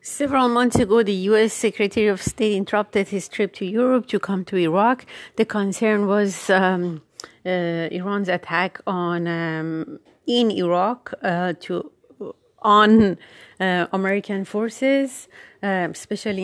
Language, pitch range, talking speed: Persian, 175-215 Hz, 130 wpm